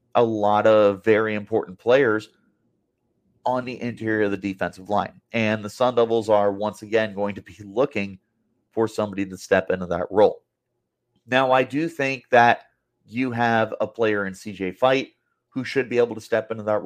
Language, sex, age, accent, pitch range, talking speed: English, male, 30-49, American, 105-135 Hz, 180 wpm